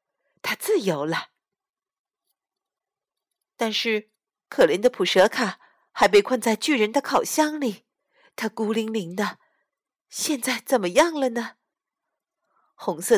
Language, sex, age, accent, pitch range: Chinese, female, 50-69, native, 210-335 Hz